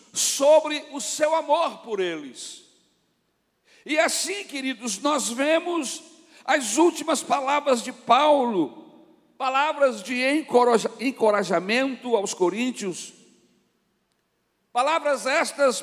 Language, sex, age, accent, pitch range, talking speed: Portuguese, male, 60-79, Brazilian, 230-315 Hz, 85 wpm